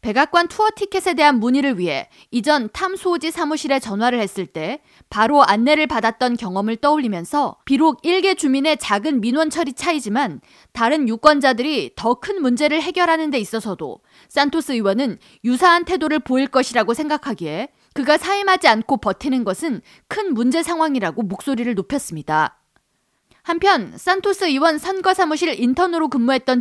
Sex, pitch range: female, 240-320 Hz